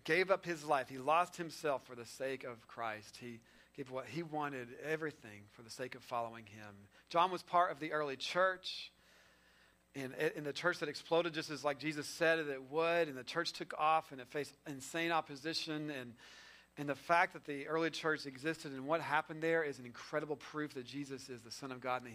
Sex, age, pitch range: male, 40-59, 135-175 Hz